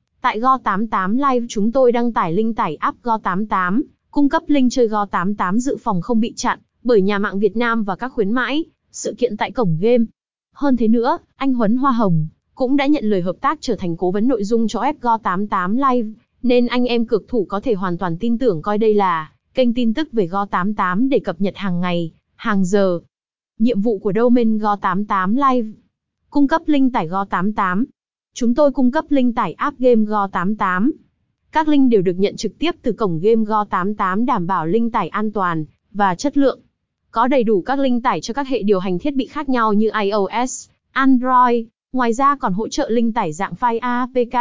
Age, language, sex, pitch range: 20-39, Vietnamese, female, 200-250 Hz